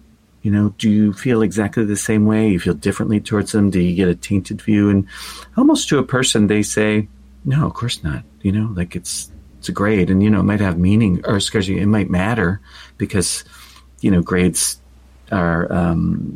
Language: English